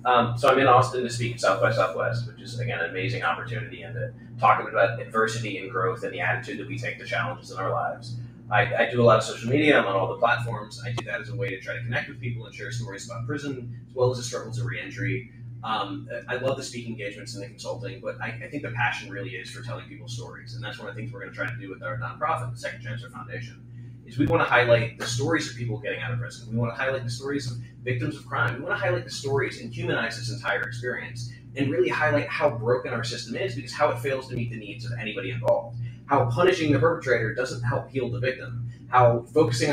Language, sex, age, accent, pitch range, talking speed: English, male, 30-49, American, 120-130 Hz, 265 wpm